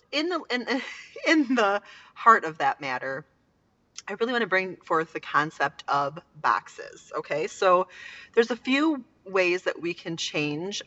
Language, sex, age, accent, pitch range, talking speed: English, female, 30-49, American, 150-215 Hz, 160 wpm